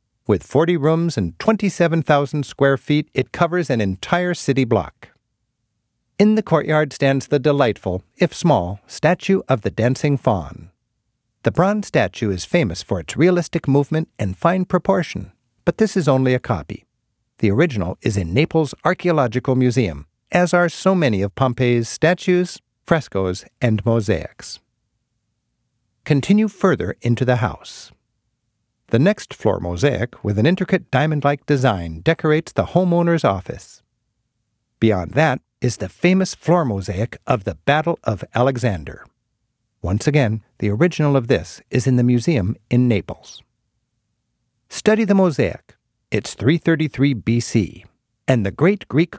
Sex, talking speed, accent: male, 140 wpm, American